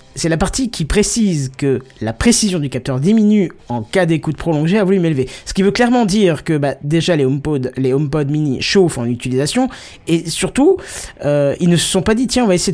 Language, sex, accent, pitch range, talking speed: French, male, French, 130-180 Hz, 220 wpm